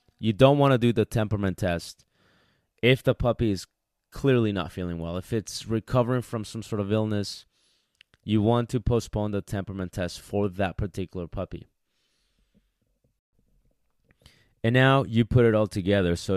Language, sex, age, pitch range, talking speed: English, male, 20-39, 95-115 Hz, 160 wpm